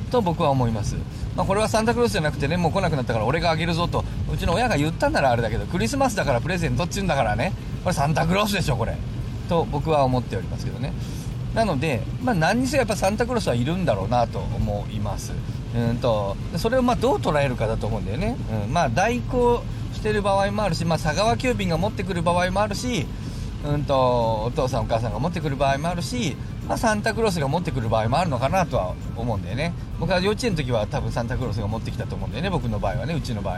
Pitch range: 115-145 Hz